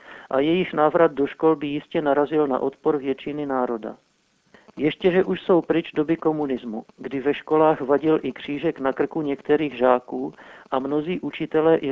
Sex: male